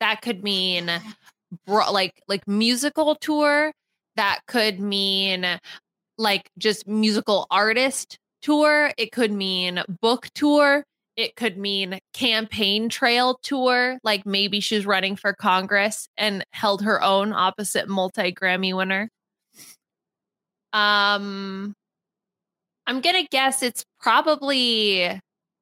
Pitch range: 185-230 Hz